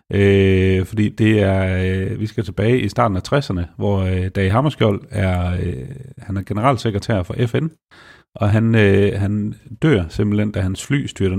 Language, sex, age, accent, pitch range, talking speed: Danish, male, 40-59, native, 95-115 Hz, 130 wpm